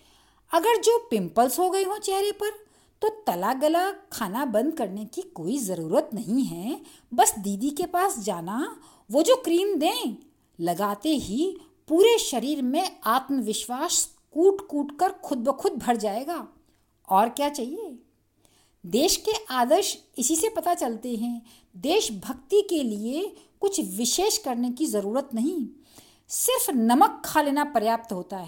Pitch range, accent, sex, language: 230-350 Hz, native, female, Hindi